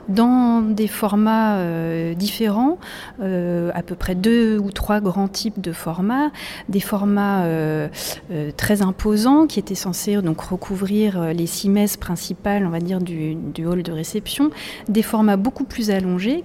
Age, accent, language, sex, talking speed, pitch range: 30-49, French, French, female, 160 wpm, 175-220 Hz